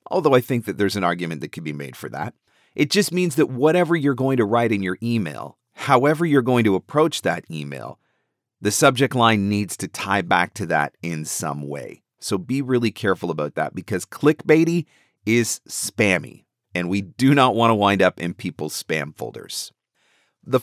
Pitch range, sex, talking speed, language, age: 100-145 Hz, male, 195 wpm, English, 40-59